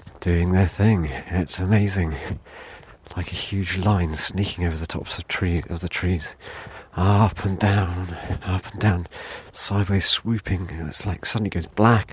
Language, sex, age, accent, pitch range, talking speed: English, male, 40-59, British, 85-105 Hz, 155 wpm